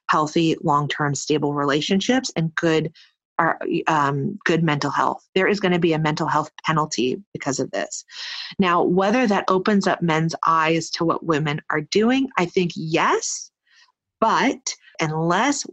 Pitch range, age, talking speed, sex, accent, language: 160-200 Hz, 30-49, 150 wpm, female, American, English